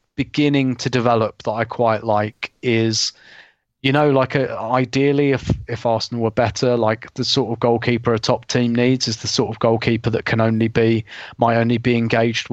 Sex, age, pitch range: male, 30-49, 115-130 Hz